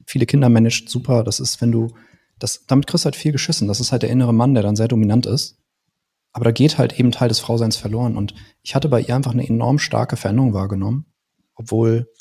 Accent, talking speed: German, 230 wpm